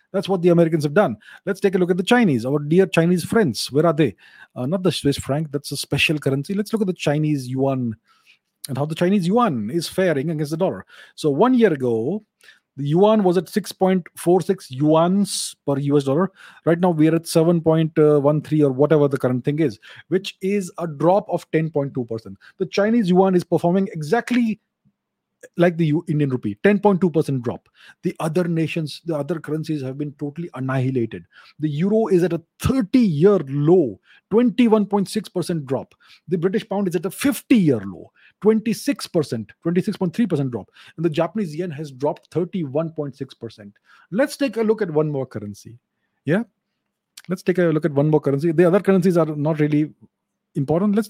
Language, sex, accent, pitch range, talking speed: English, male, Indian, 145-195 Hz, 175 wpm